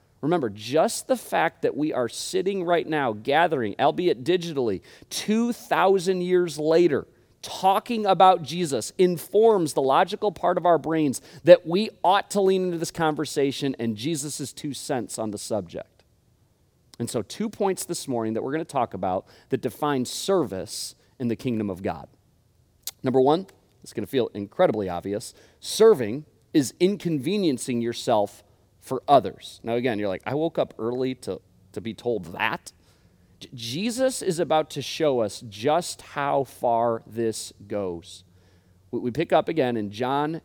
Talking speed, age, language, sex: 155 wpm, 40-59, English, male